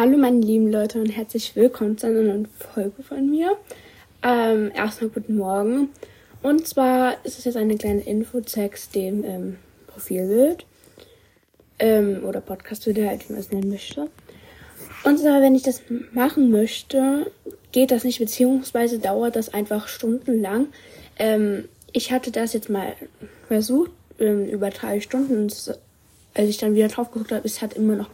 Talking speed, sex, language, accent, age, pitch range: 165 wpm, female, German, German, 20-39, 200-245 Hz